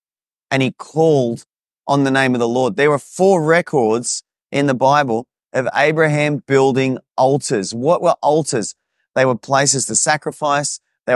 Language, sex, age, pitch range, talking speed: English, male, 30-49, 120-145 Hz, 155 wpm